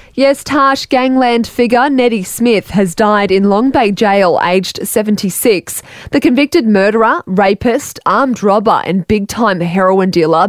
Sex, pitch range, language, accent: female, 170-220 Hz, English, Australian